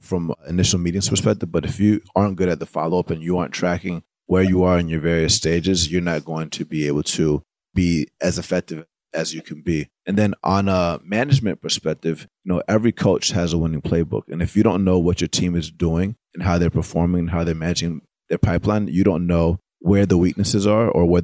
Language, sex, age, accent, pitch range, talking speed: English, male, 30-49, American, 85-100 Hz, 225 wpm